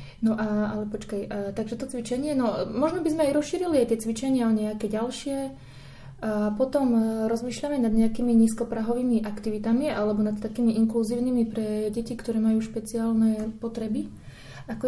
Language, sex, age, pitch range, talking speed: Slovak, female, 20-39, 215-235 Hz, 140 wpm